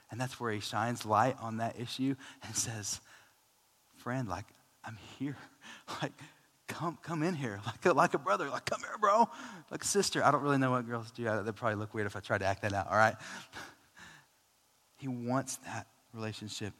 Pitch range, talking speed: 120-170 Hz, 205 wpm